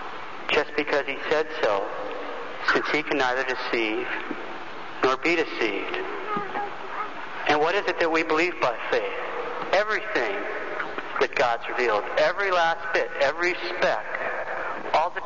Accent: American